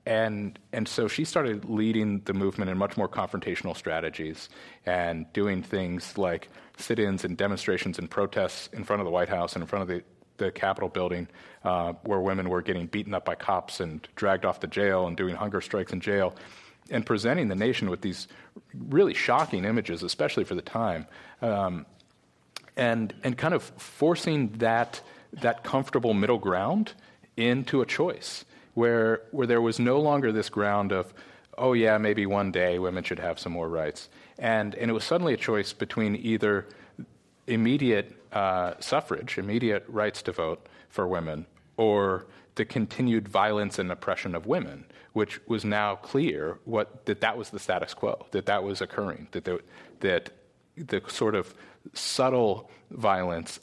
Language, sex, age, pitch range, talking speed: English, male, 40-59, 90-110 Hz, 170 wpm